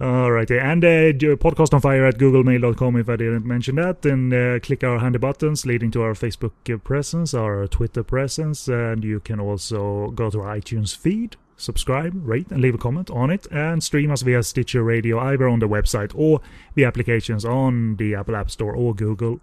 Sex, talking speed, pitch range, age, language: male, 205 wpm, 110-140 Hz, 30-49, English